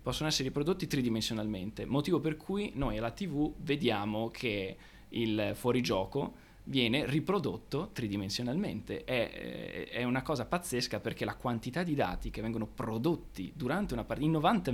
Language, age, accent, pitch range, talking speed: Italian, 20-39, native, 110-150 Hz, 145 wpm